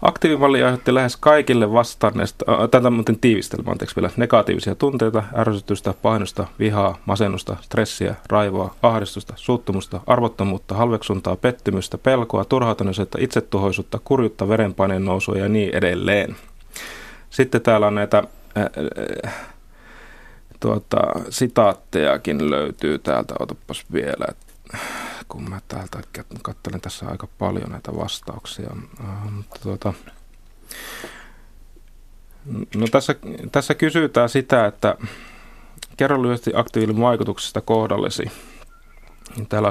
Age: 30-49